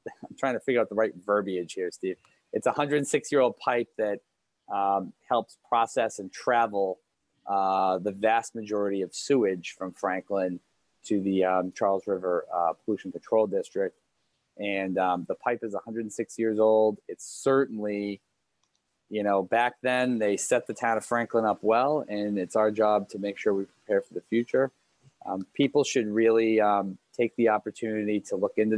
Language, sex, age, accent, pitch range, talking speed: English, male, 30-49, American, 100-125 Hz, 175 wpm